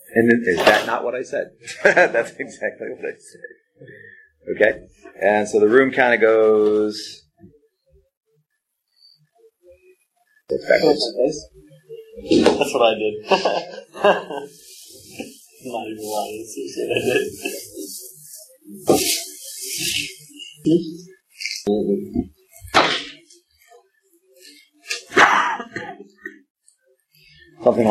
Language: English